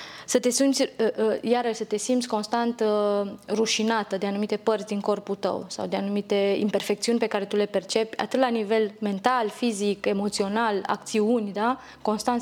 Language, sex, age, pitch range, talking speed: Romanian, female, 20-39, 190-220 Hz, 160 wpm